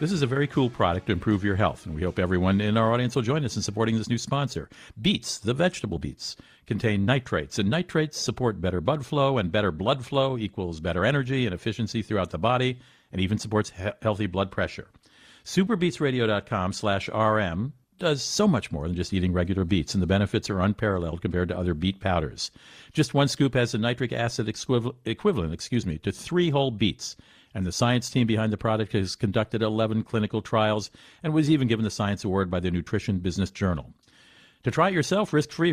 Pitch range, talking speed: 95-130 Hz, 205 wpm